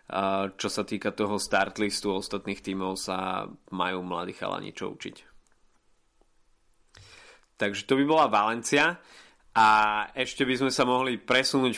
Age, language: 20-39, Slovak